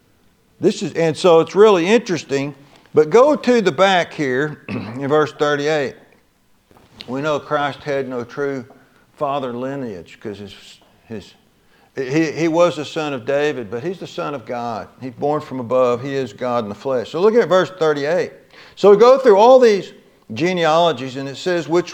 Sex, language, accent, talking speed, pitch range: male, English, American, 180 wpm, 140-200 Hz